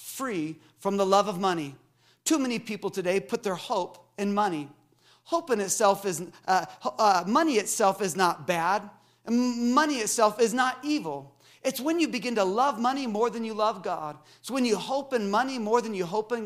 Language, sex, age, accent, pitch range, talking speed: English, male, 40-59, American, 180-235 Hz, 195 wpm